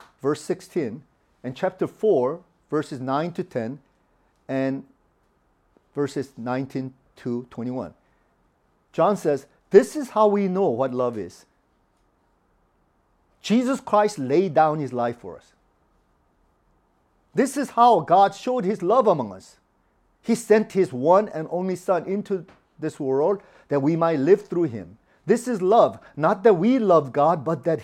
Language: English